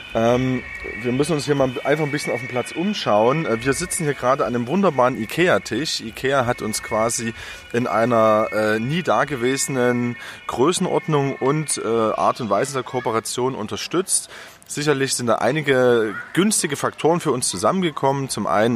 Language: German